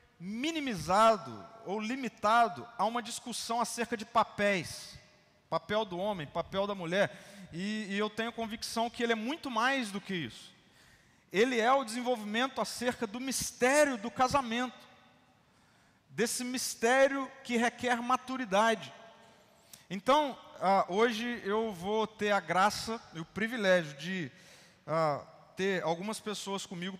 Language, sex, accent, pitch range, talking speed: Portuguese, male, Brazilian, 155-225 Hz, 130 wpm